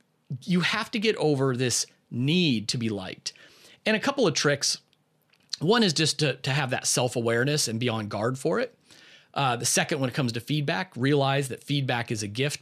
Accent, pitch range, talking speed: American, 120-155 Hz, 205 wpm